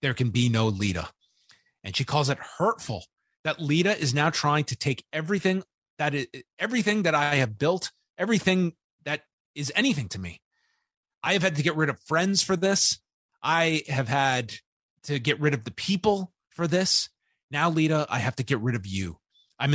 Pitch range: 130-185 Hz